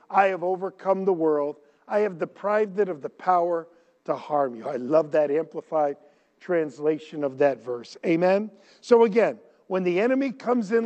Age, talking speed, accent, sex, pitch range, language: 50-69, 170 wpm, American, male, 160-215 Hz, English